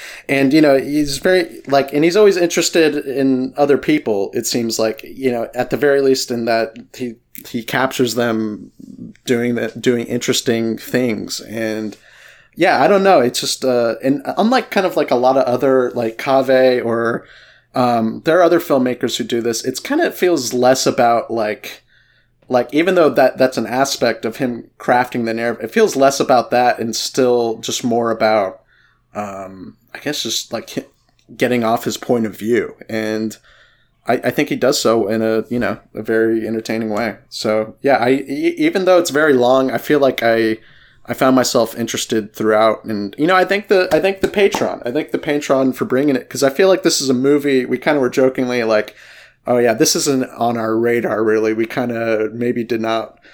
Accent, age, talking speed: American, 30-49, 200 wpm